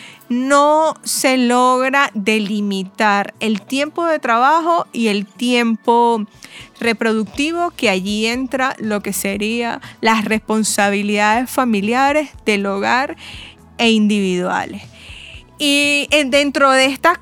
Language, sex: Spanish, female